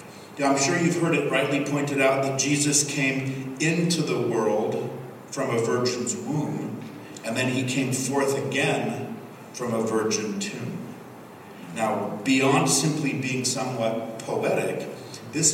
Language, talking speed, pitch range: English, 140 wpm, 130-165 Hz